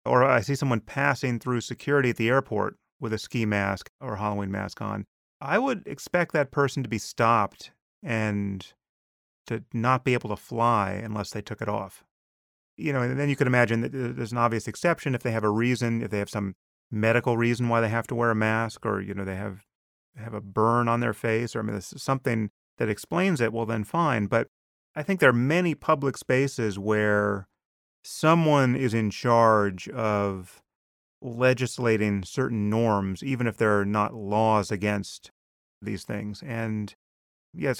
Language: English